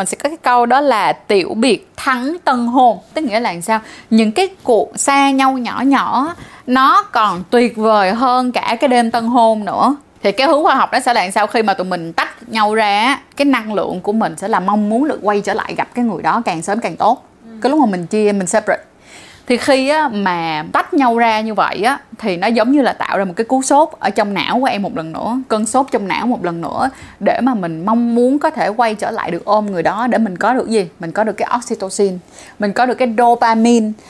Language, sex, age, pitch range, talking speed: Vietnamese, female, 20-39, 205-265 Hz, 250 wpm